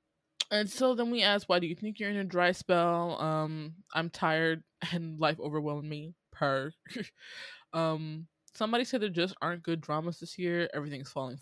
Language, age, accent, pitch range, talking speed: English, 20-39, American, 150-180 Hz, 180 wpm